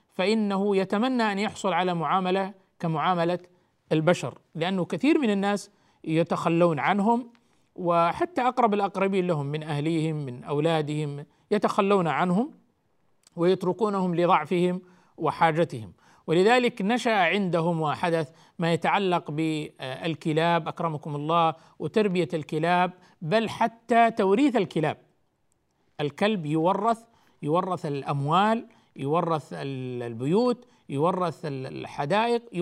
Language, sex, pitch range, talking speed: Arabic, male, 160-200 Hz, 90 wpm